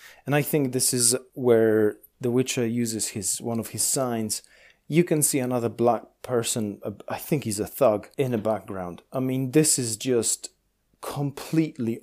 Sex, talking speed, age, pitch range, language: male, 170 wpm, 30-49, 115-145 Hz, English